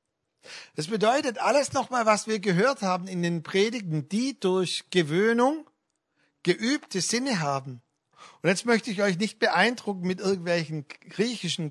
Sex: male